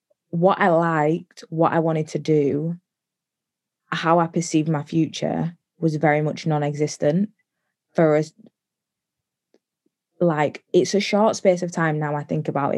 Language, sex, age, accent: English, female, 20-39, British